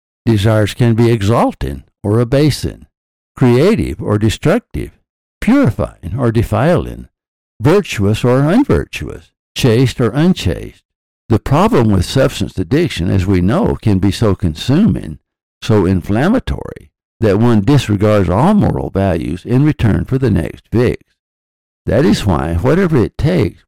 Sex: male